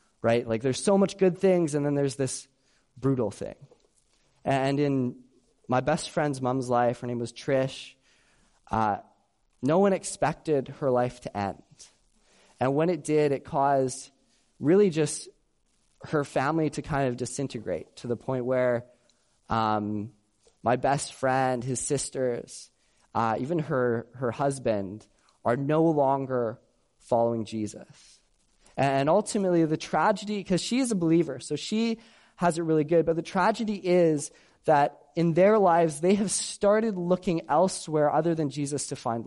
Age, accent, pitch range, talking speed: 20-39, American, 130-175 Hz, 150 wpm